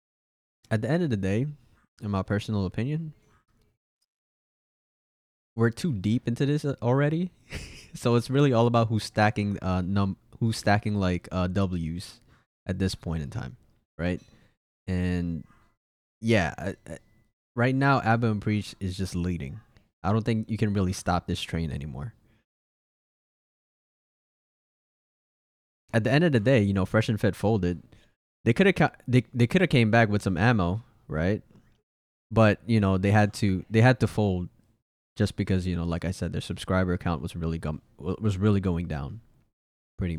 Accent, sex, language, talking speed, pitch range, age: American, male, English, 165 wpm, 90-115 Hz, 20-39